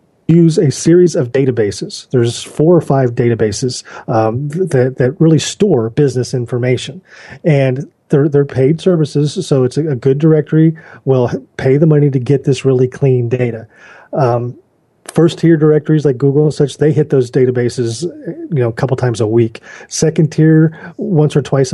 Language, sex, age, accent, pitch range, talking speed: English, male, 40-59, American, 120-150 Hz, 170 wpm